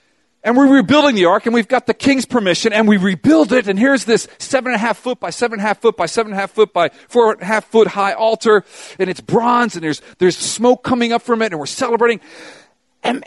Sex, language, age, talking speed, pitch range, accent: male, English, 40-59, 260 wpm, 185-250 Hz, American